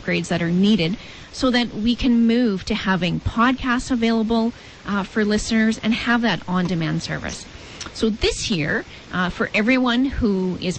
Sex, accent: female, American